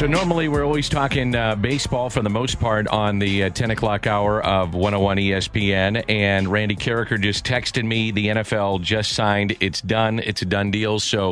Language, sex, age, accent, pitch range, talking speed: English, male, 40-59, American, 100-115 Hz, 195 wpm